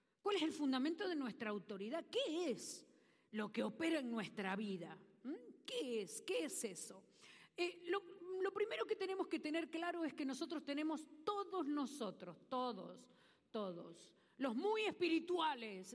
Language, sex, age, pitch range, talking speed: Spanish, female, 40-59, 235-360 Hz, 150 wpm